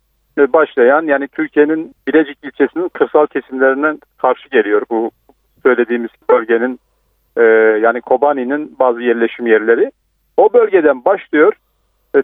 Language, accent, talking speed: Turkish, native, 110 wpm